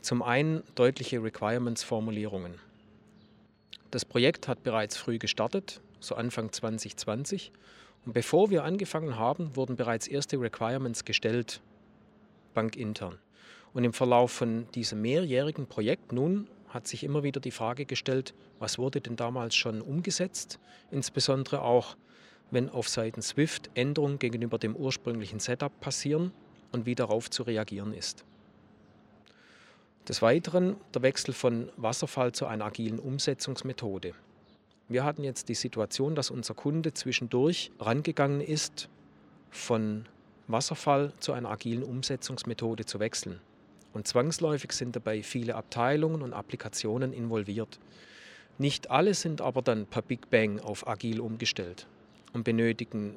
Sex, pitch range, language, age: male, 110-140 Hz, German, 40-59